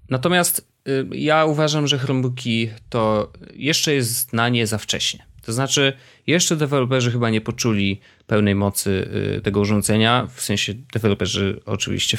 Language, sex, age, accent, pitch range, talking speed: Polish, male, 30-49, native, 105-130 Hz, 130 wpm